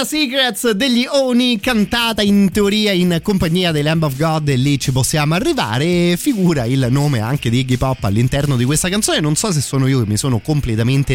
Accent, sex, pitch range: native, male, 115-155 Hz